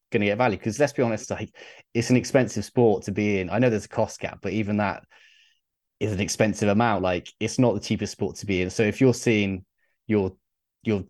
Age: 20-39